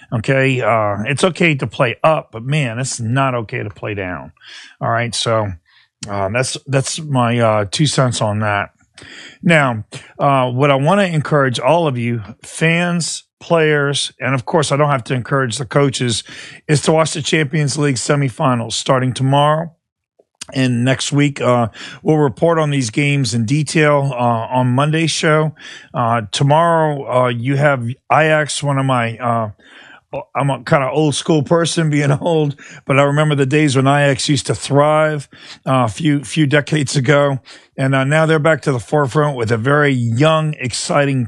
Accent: American